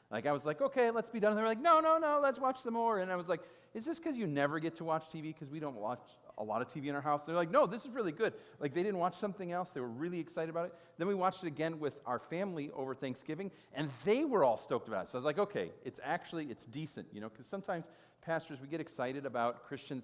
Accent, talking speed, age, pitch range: American, 290 wpm, 40-59, 105-170 Hz